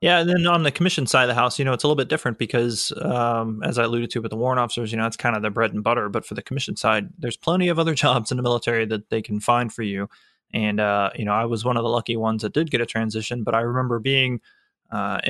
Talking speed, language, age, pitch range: 300 wpm, English, 20-39, 110-130 Hz